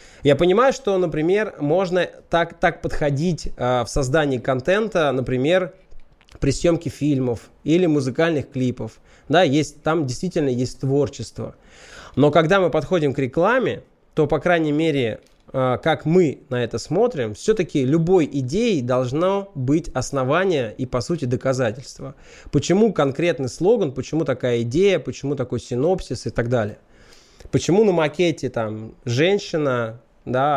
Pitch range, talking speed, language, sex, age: 130-175 Hz, 135 wpm, Russian, male, 20-39